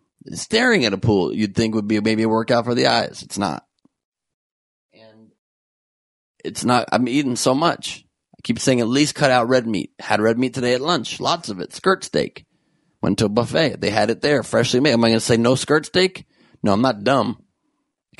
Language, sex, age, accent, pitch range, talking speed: English, male, 30-49, American, 115-150 Hz, 220 wpm